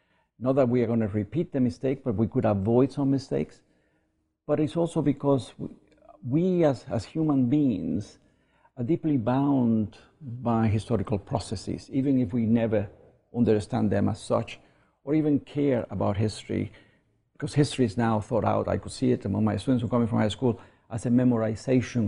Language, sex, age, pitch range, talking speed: English, male, 50-69, 110-135 Hz, 180 wpm